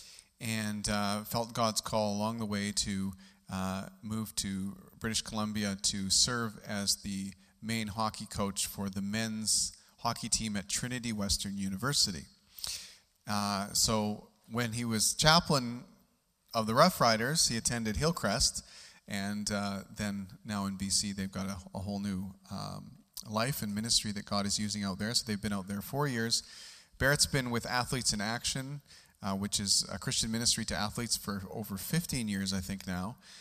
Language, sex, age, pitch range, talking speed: English, male, 30-49, 100-115 Hz, 165 wpm